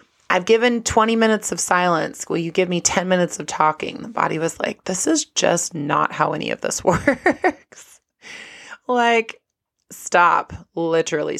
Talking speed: 160 wpm